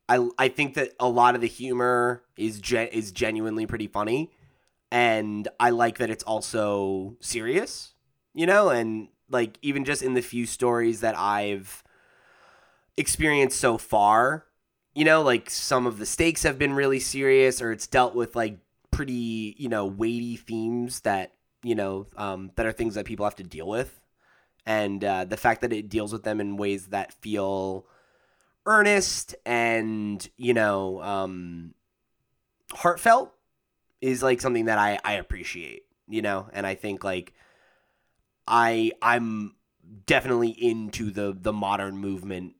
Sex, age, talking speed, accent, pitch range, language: male, 20-39, 155 wpm, American, 100-125 Hz, English